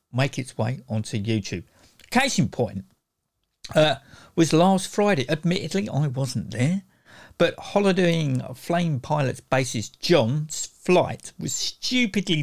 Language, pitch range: English, 125-185 Hz